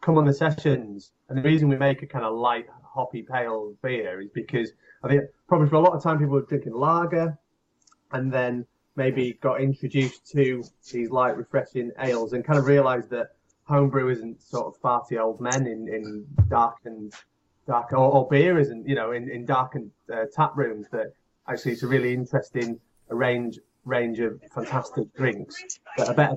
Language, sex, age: English, male, 30-49